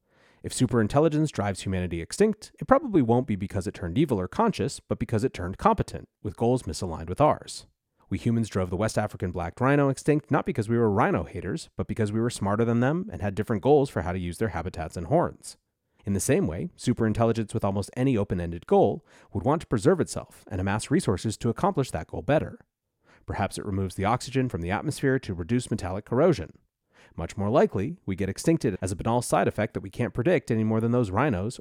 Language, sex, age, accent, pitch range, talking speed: English, male, 30-49, American, 95-130 Hz, 215 wpm